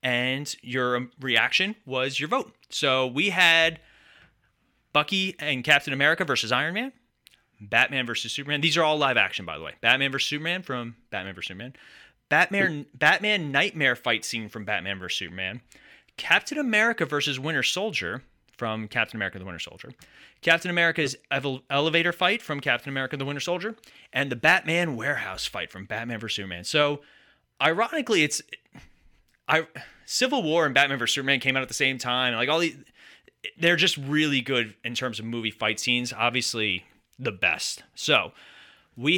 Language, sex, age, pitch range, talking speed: English, male, 30-49, 115-160 Hz, 165 wpm